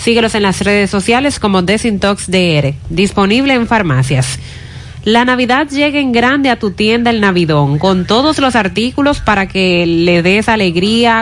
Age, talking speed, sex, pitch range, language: 30-49, 155 wpm, female, 180-230 Hz, Spanish